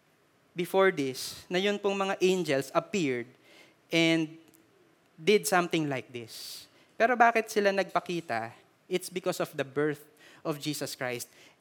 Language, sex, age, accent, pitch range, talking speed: Filipino, male, 20-39, native, 175-215 Hz, 130 wpm